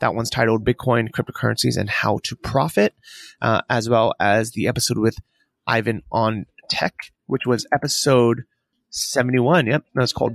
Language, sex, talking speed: English, male, 150 wpm